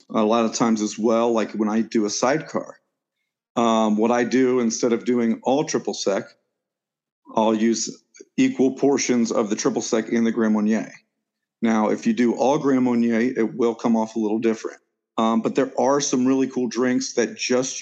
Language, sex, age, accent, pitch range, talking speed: English, male, 40-59, American, 115-130 Hz, 195 wpm